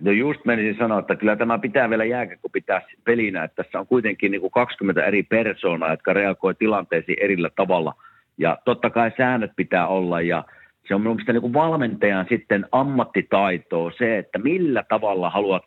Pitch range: 105-155 Hz